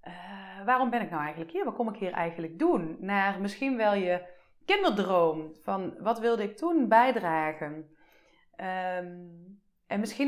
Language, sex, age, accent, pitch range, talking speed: Dutch, female, 30-49, Dutch, 180-225 Hz, 145 wpm